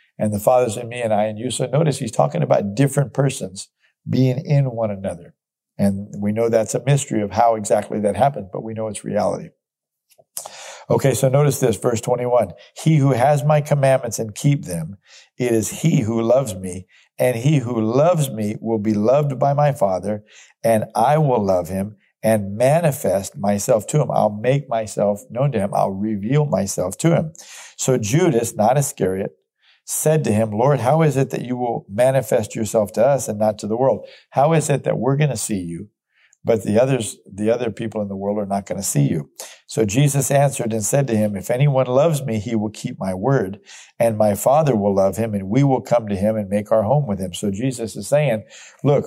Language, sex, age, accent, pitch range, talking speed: English, male, 50-69, American, 105-140 Hz, 215 wpm